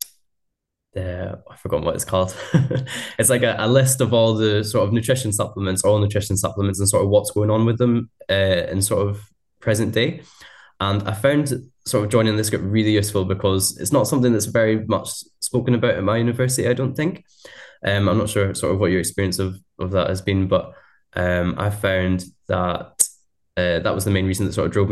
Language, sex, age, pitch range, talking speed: English, male, 10-29, 90-105 Hz, 215 wpm